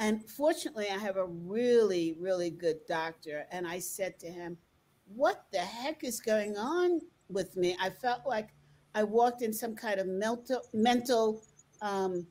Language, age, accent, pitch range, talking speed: English, 50-69, American, 175-240 Hz, 160 wpm